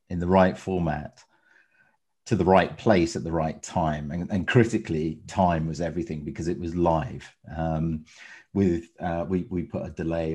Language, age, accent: English, 40-59, British